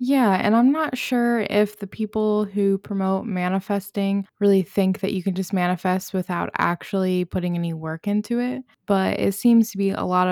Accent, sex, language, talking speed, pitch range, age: American, female, English, 185 wpm, 175-195 Hz, 20-39